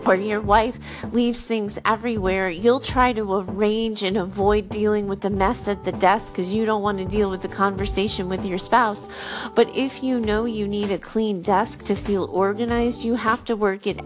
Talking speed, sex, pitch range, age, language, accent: 205 wpm, female, 190-235 Hz, 30-49, English, American